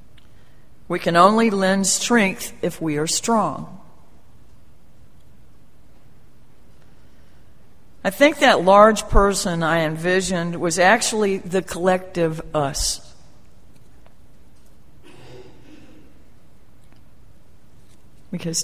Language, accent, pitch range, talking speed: English, American, 170-210 Hz, 70 wpm